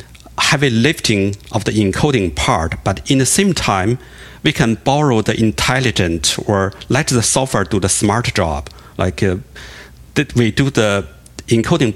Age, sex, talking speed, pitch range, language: 50-69, male, 155 wpm, 95-120 Hz, English